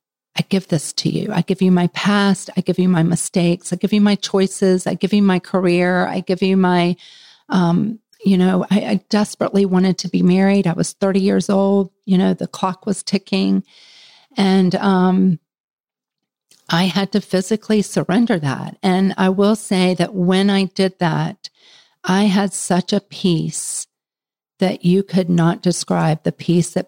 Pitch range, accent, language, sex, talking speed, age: 170-195 Hz, American, English, female, 180 wpm, 40-59